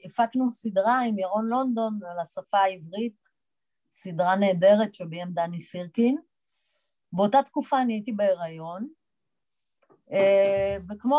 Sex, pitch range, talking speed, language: female, 185-260 Hz, 100 wpm, Hebrew